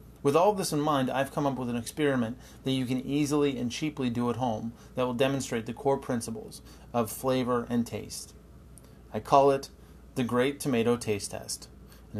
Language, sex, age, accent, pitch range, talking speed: English, male, 30-49, American, 120-140 Hz, 190 wpm